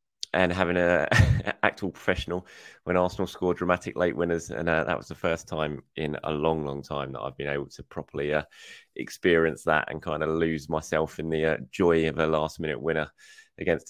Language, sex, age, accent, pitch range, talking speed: English, male, 20-39, British, 80-105 Hz, 205 wpm